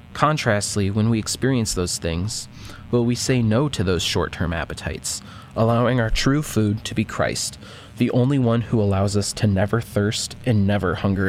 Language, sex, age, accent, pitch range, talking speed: English, male, 20-39, American, 100-115 Hz, 175 wpm